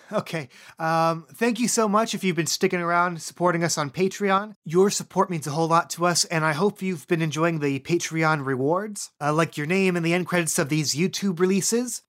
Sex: male